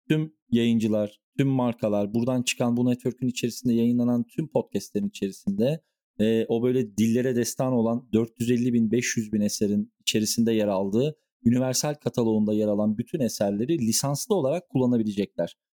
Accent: native